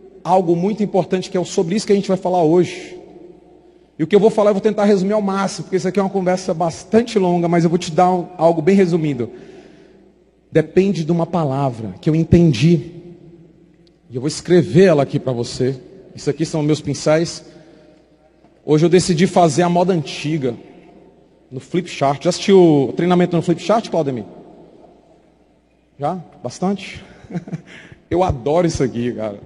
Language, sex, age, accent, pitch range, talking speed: Portuguese, male, 40-59, Brazilian, 160-195 Hz, 175 wpm